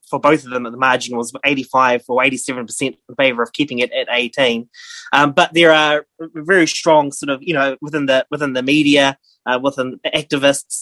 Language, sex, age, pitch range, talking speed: English, male, 20-39, 130-155 Hz, 205 wpm